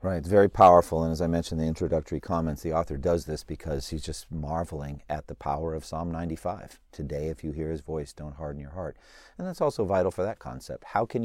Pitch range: 80-115 Hz